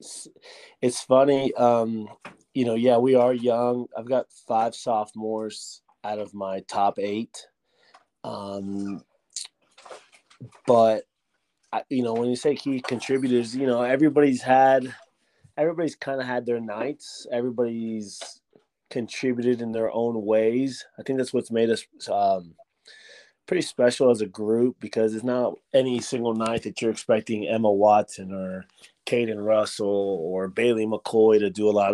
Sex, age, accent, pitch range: male, 20-39, American, 105-125 Hz